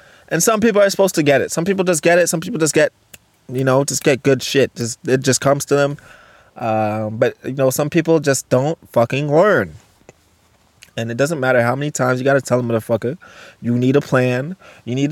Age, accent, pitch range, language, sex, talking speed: 20-39, American, 125-165 Hz, English, male, 230 wpm